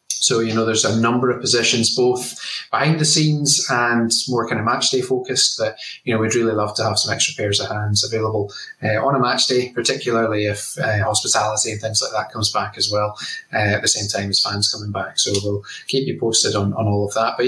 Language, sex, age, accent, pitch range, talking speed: English, male, 30-49, British, 110-125 Hz, 240 wpm